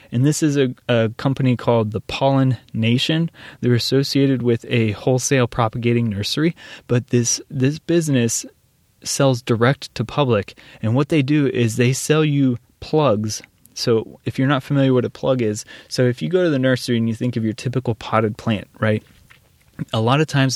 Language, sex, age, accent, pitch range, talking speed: English, male, 20-39, American, 115-135 Hz, 185 wpm